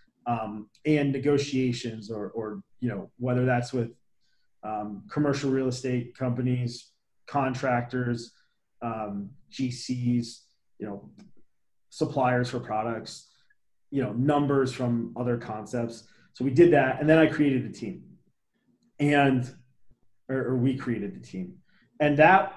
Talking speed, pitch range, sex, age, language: 130 wpm, 120-140 Hz, male, 30-49, English